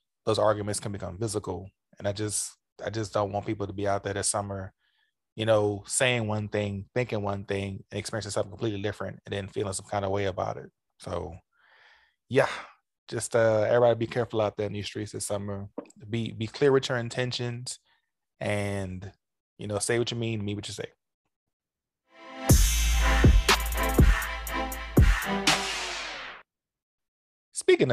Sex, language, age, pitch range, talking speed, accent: male, English, 20-39, 100-115 Hz, 160 wpm, American